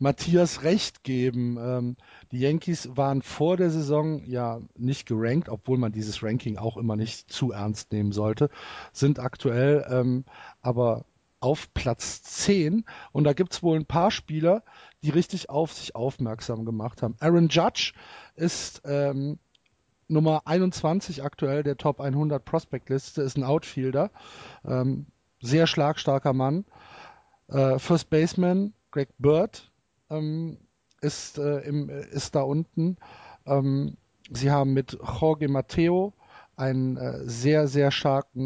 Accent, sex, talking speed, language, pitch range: German, male, 125 wpm, German, 130-160 Hz